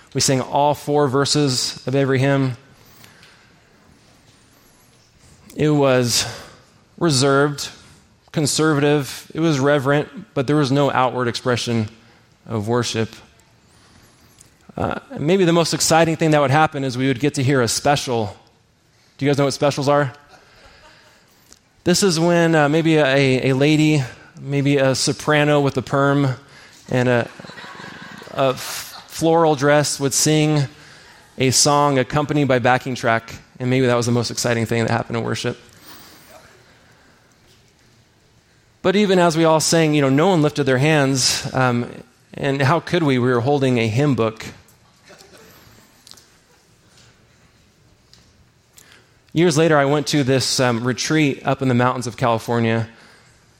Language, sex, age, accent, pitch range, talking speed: English, male, 20-39, American, 120-150 Hz, 140 wpm